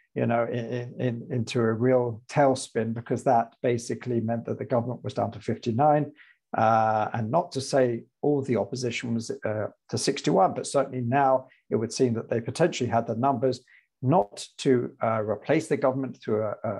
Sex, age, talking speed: male, 50-69, 190 wpm